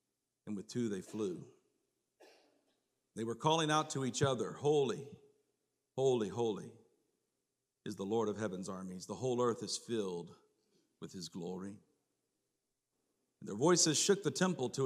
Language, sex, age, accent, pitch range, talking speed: English, male, 50-69, American, 105-140 Hz, 140 wpm